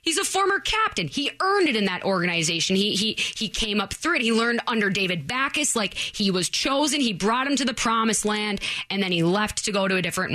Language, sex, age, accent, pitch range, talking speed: English, female, 20-39, American, 185-250 Hz, 245 wpm